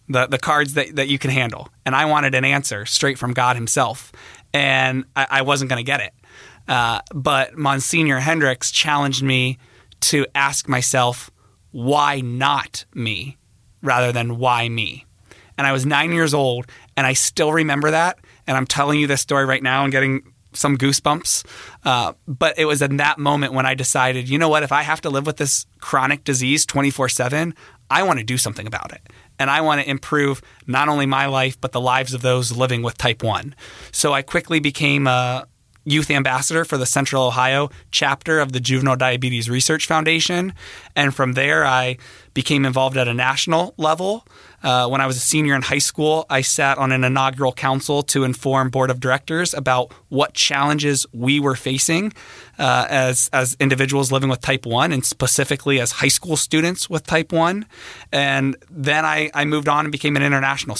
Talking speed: 190 wpm